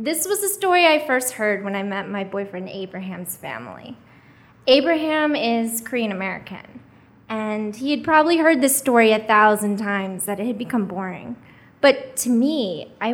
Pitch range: 200-250 Hz